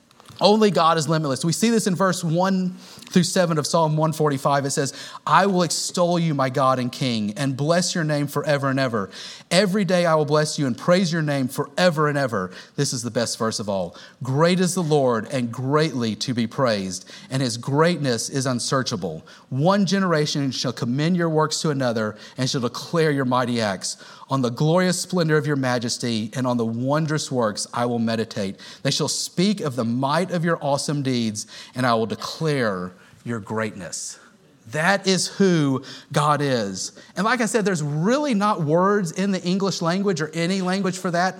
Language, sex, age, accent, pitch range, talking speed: English, male, 40-59, American, 130-180 Hz, 195 wpm